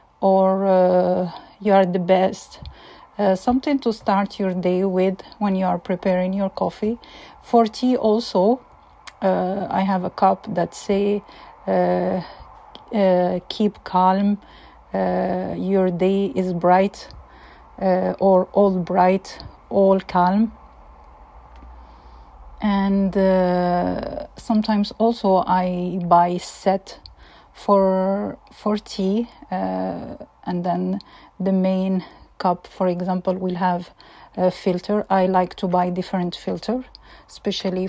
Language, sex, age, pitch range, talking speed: English, female, 40-59, 180-200 Hz, 115 wpm